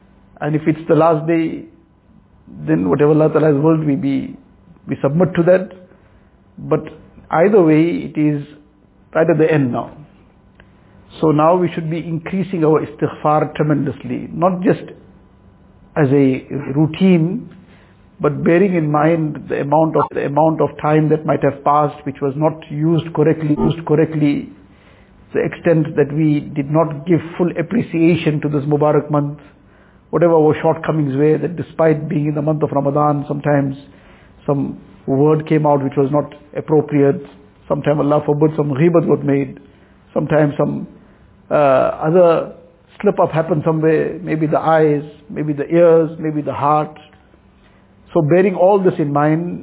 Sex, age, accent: male, 60-79, Indian